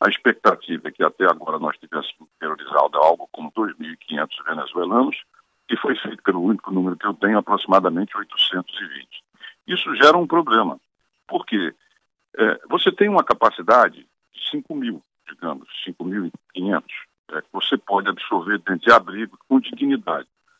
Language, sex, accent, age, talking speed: Portuguese, male, Brazilian, 60-79, 135 wpm